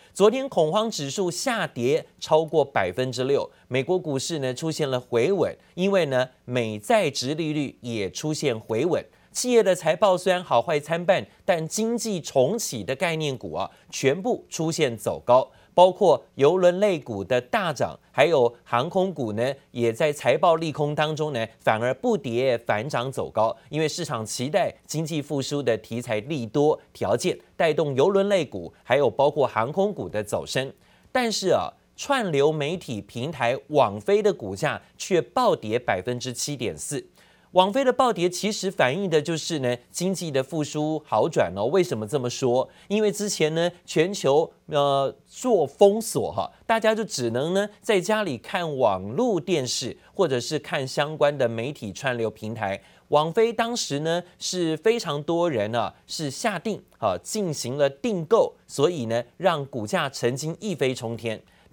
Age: 30-49